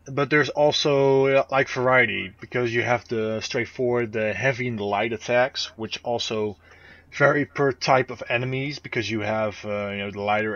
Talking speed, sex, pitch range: 175 wpm, male, 105-120 Hz